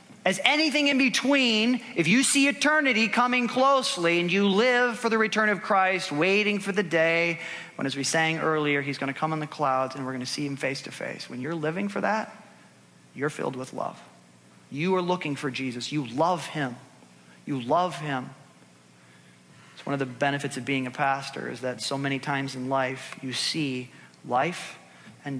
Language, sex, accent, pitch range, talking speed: English, male, American, 130-165 Hz, 195 wpm